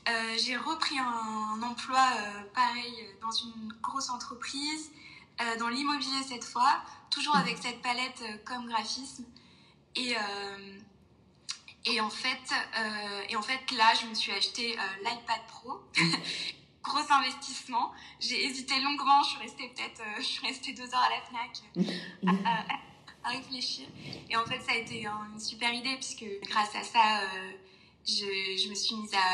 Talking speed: 170 wpm